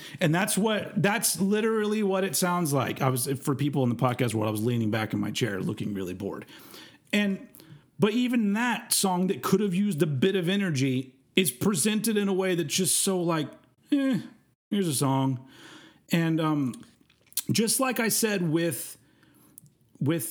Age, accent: 40-59, American